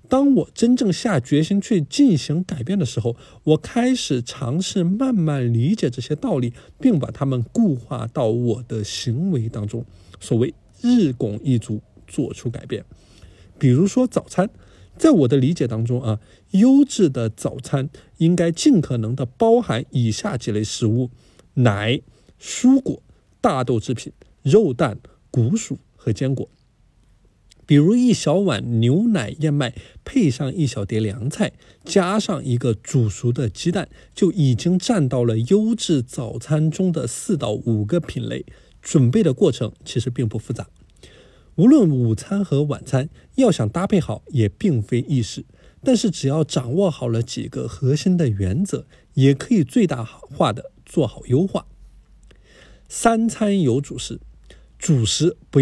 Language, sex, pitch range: Chinese, male, 115-180 Hz